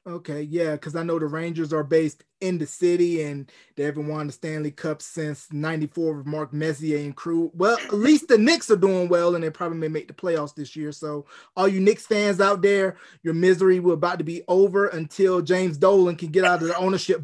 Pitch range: 160-195 Hz